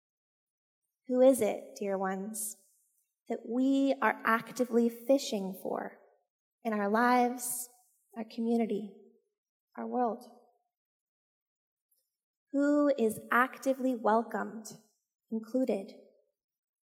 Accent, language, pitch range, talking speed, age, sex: American, English, 210-250 Hz, 80 wpm, 20-39, female